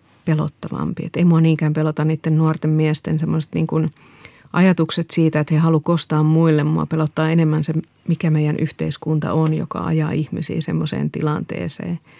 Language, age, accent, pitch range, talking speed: Finnish, 30-49, native, 150-165 Hz, 150 wpm